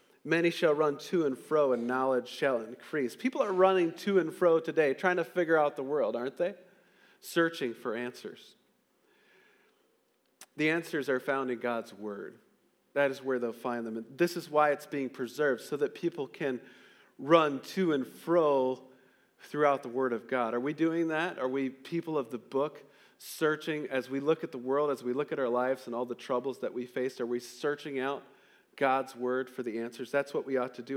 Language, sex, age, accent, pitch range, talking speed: English, male, 40-59, American, 130-160 Hz, 205 wpm